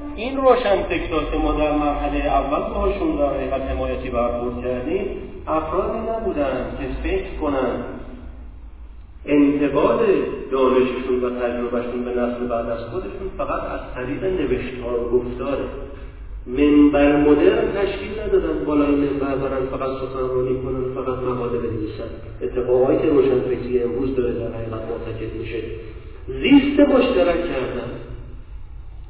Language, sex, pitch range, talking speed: Persian, male, 125-175 Hz, 120 wpm